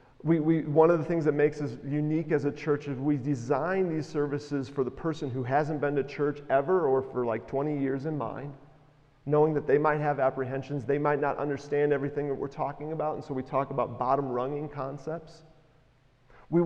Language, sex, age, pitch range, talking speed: English, male, 40-59, 135-160 Hz, 200 wpm